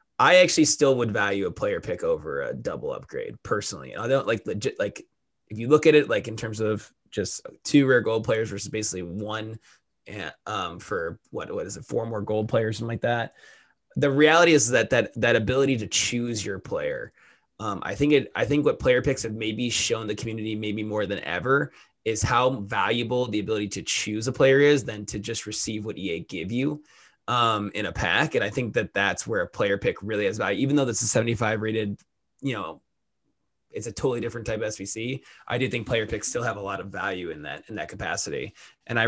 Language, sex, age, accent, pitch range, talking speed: English, male, 20-39, American, 110-145 Hz, 220 wpm